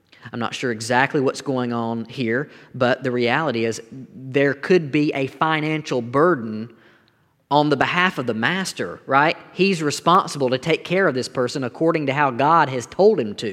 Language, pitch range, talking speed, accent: English, 120-155 Hz, 180 wpm, American